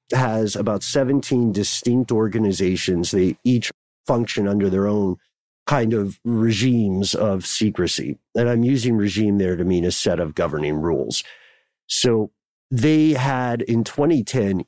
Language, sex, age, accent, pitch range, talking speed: English, male, 50-69, American, 95-120 Hz, 135 wpm